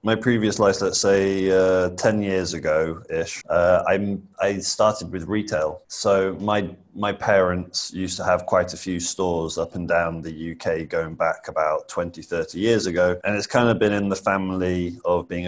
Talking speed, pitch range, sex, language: 180 wpm, 85-110 Hz, male, English